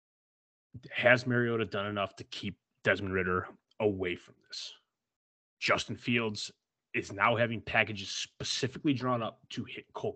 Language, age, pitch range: English, 30-49, 95-120 Hz